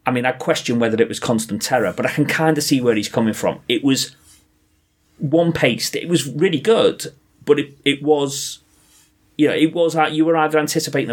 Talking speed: 220 wpm